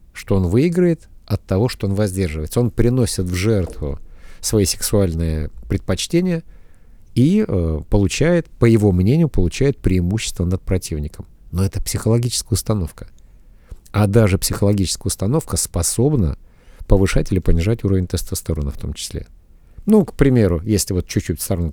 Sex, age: male, 50-69